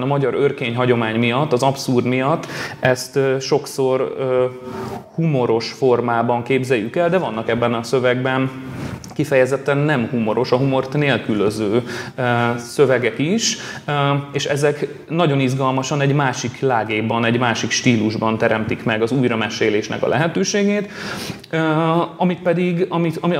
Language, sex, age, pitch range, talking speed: Hungarian, male, 30-49, 120-155 Hz, 125 wpm